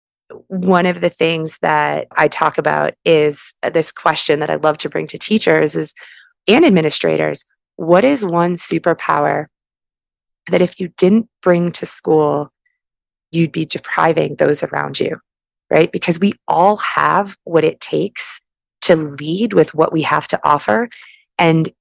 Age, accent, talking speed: 20-39, American, 150 wpm